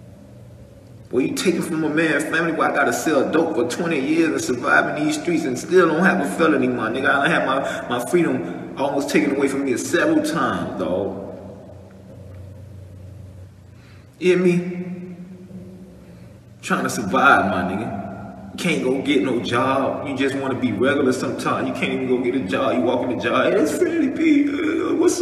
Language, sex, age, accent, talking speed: English, male, 20-39, American, 200 wpm